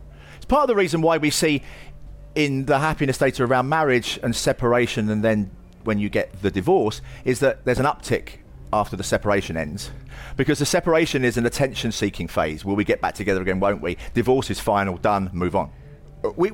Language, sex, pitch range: English, male, 90-125 Hz